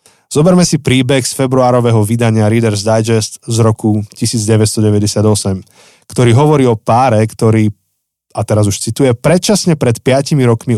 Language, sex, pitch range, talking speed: Slovak, male, 110-135 Hz, 135 wpm